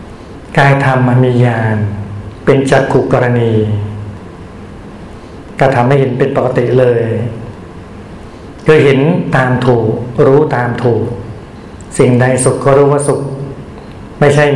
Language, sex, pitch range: Thai, male, 110-140 Hz